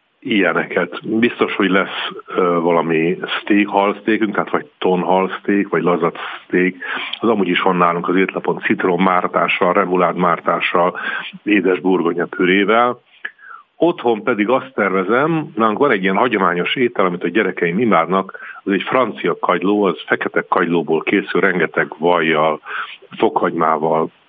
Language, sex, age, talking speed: Hungarian, male, 60-79, 125 wpm